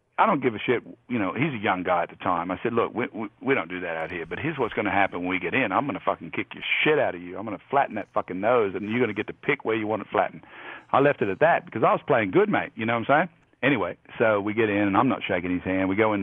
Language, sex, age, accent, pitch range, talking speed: English, male, 50-69, American, 90-125 Hz, 350 wpm